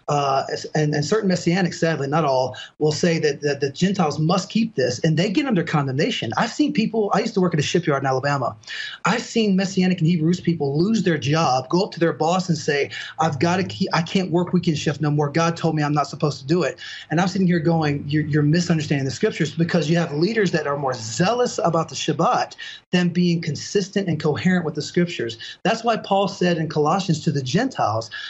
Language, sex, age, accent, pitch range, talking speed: English, male, 30-49, American, 150-190 Hz, 230 wpm